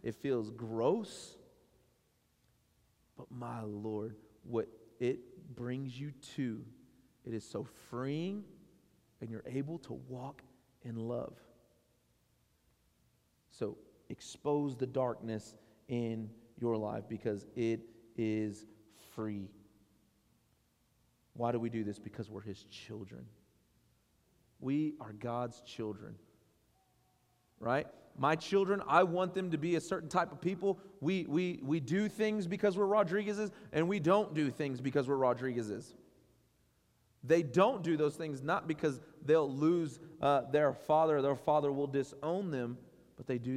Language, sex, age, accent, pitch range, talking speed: English, male, 40-59, American, 110-150 Hz, 130 wpm